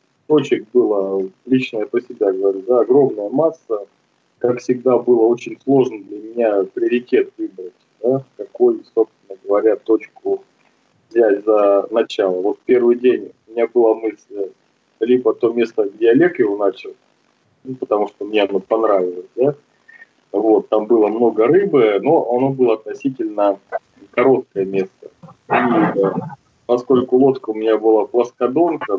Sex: male